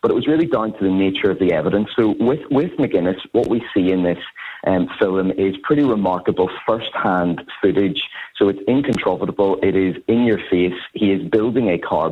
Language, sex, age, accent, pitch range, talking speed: English, male, 40-59, British, 90-110 Hz, 205 wpm